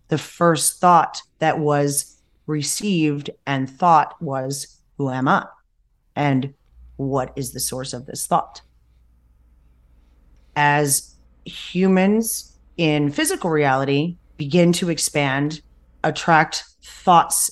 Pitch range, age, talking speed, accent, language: 130-155 Hz, 30-49, 105 wpm, American, English